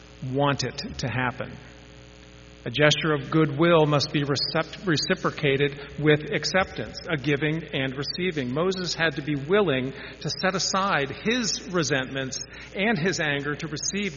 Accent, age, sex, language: American, 50-69, male, English